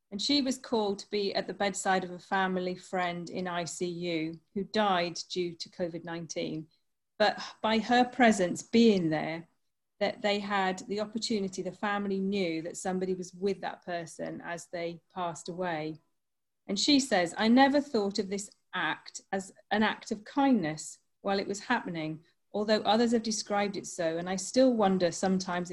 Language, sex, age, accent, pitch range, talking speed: English, female, 40-59, British, 170-215 Hz, 170 wpm